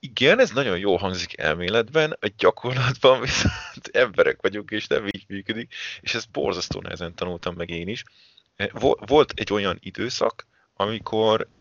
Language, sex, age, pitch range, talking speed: Hungarian, male, 30-49, 90-105 Hz, 145 wpm